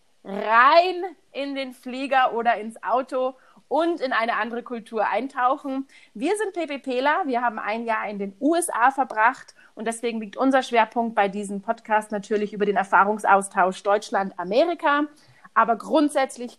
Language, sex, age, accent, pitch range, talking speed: German, female, 30-49, German, 210-285 Hz, 140 wpm